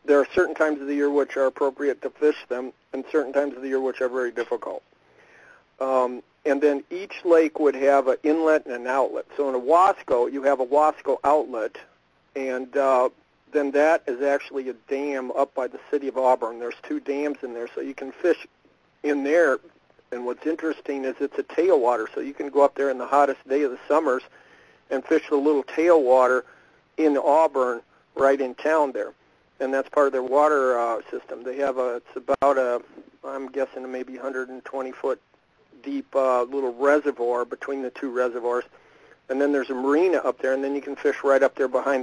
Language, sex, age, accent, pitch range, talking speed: English, male, 50-69, American, 130-145 Hz, 205 wpm